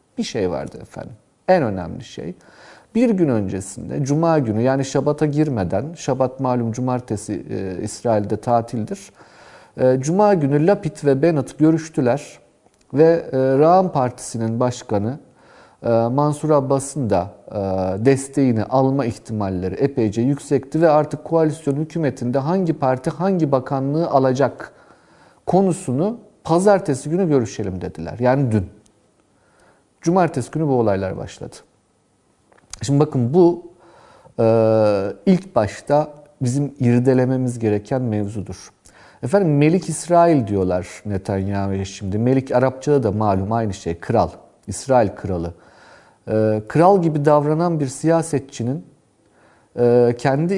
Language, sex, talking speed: Turkish, male, 115 wpm